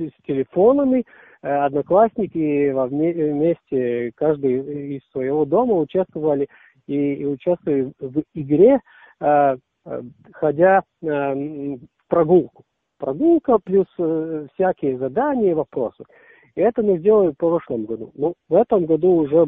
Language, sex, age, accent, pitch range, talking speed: Russian, male, 50-69, native, 135-170 Hz, 100 wpm